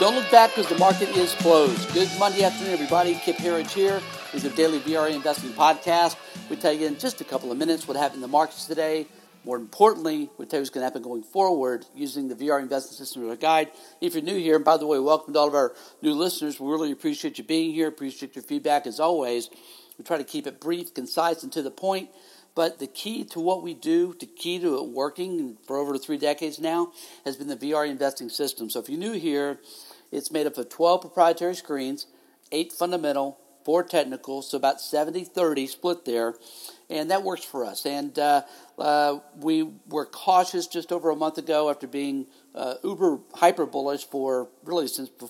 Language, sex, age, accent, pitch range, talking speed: English, male, 60-79, American, 140-180 Hz, 215 wpm